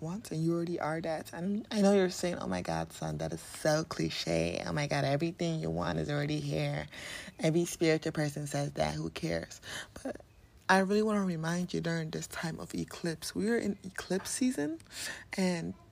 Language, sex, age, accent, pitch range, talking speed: English, female, 20-39, American, 120-180 Hz, 200 wpm